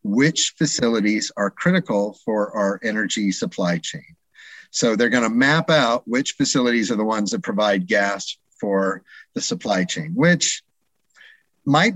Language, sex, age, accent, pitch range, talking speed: English, male, 50-69, American, 100-140 Hz, 140 wpm